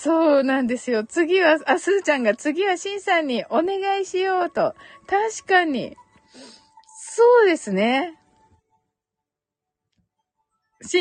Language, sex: Japanese, female